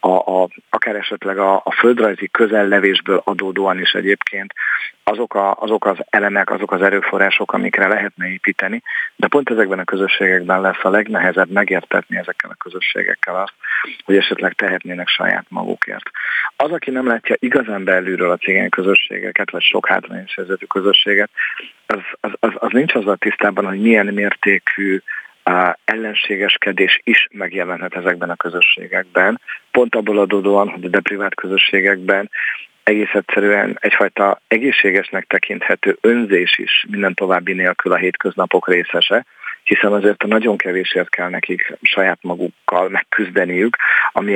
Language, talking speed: Hungarian, 135 wpm